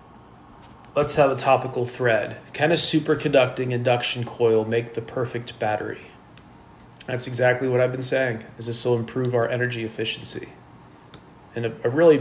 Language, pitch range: English, 110-130 Hz